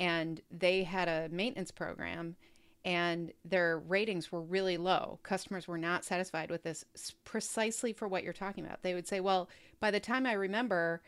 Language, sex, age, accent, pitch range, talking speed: English, female, 30-49, American, 175-220 Hz, 180 wpm